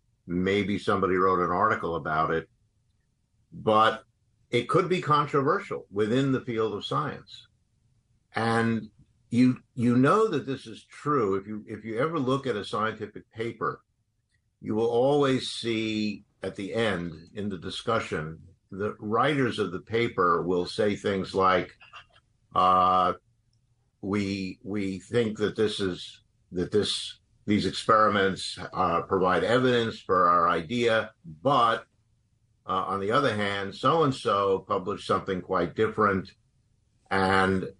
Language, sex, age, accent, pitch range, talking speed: English, male, 50-69, American, 95-115 Hz, 135 wpm